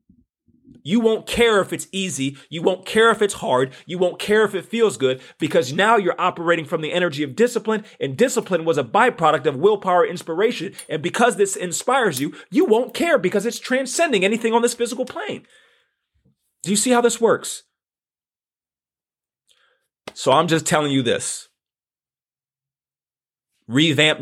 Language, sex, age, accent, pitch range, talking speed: English, male, 30-49, American, 125-190 Hz, 160 wpm